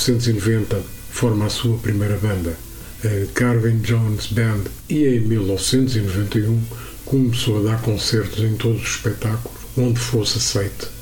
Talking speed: 130 wpm